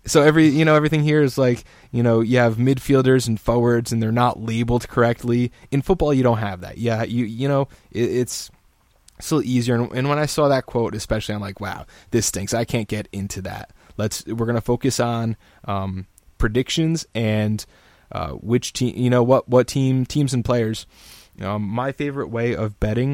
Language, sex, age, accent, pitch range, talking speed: English, male, 20-39, American, 105-120 Hz, 200 wpm